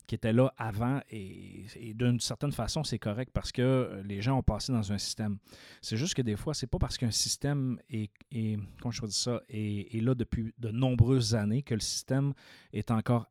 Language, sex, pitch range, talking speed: French, male, 100-125 Hz, 215 wpm